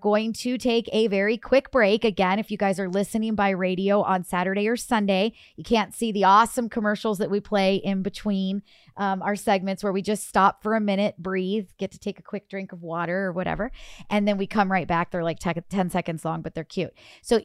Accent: American